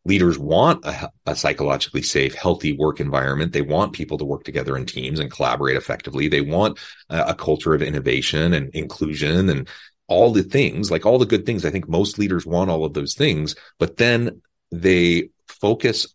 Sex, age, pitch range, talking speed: male, 30-49, 80-100 Hz, 190 wpm